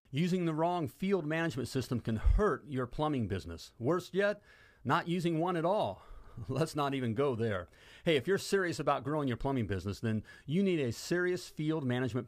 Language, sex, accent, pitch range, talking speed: English, male, American, 115-165 Hz, 190 wpm